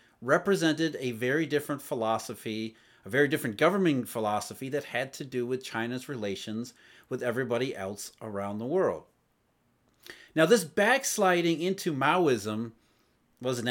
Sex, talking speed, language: male, 125 wpm, English